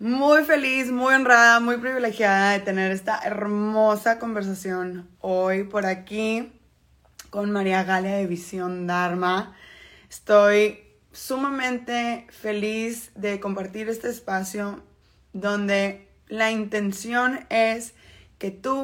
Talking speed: 105 wpm